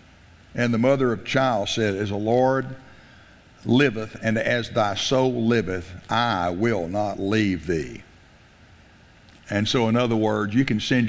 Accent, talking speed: American, 150 wpm